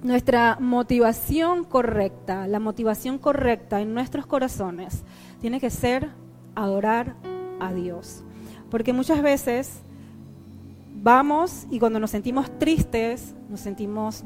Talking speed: 110 wpm